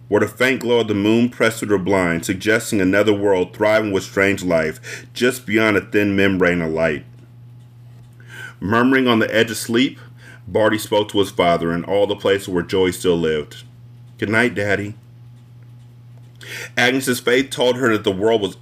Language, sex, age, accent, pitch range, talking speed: English, male, 30-49, American, 105-120 Hz, 175 wpm